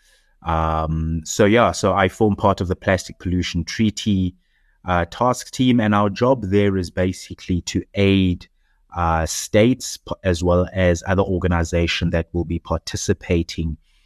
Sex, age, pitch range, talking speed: male, 30-49, 80-95 Hz, 145 wpm